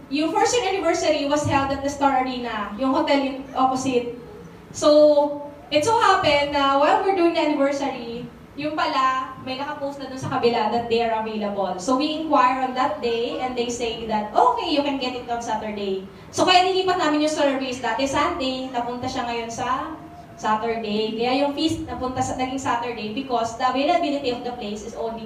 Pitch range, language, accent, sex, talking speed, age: 235-300 Hz, English, Filipino, female, 190 wpm, 20-39